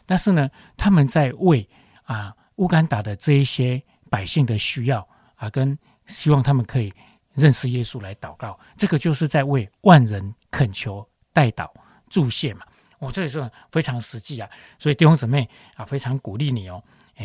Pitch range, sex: 115-155 Hz, male